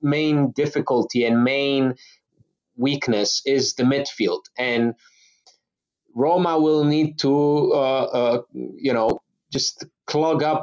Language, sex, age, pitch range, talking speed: English, male, 30-49, 120-150 Hz, 115 wpm